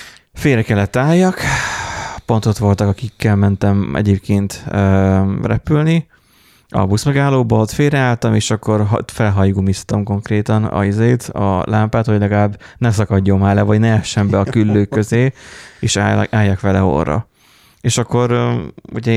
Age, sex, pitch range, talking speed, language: 20-39, male, 100-120 Hz, 135 wpm, Hungarian